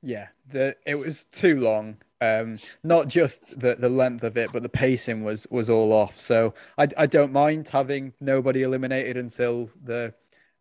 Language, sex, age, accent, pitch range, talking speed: English, male, 20-39, British, 110-125 Hz, 180 wpm